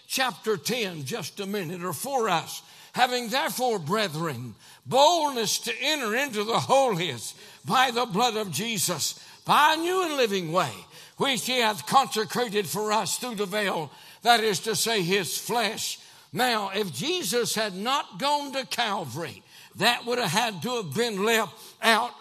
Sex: male